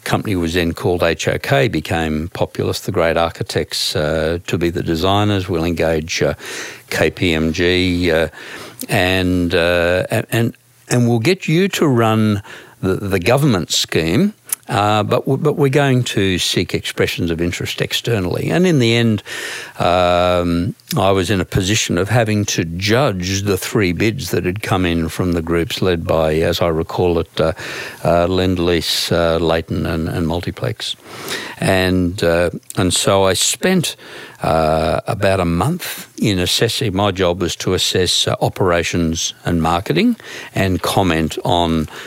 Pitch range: 85-110 Hz